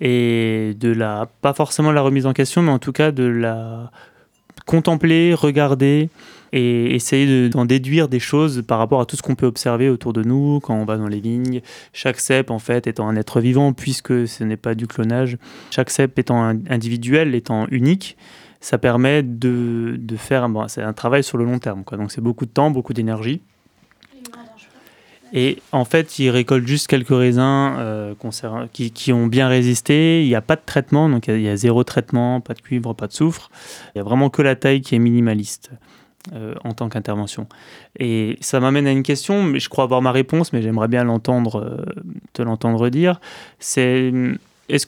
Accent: French